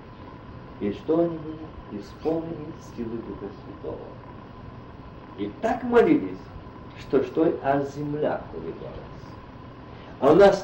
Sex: male